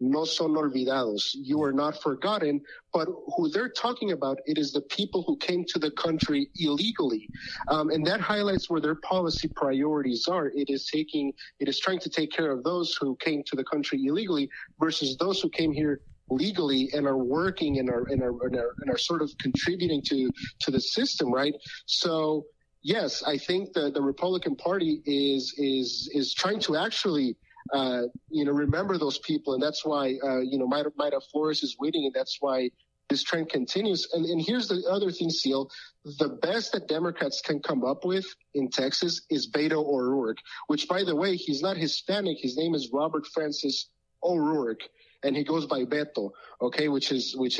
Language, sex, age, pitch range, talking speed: English, male, 30-49, 135-170 Hz, 190 wpm